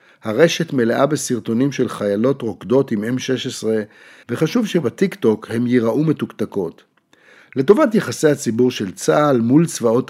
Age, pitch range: 50-69, 110-145 Hz